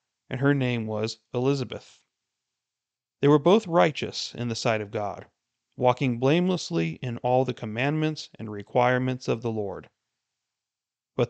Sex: male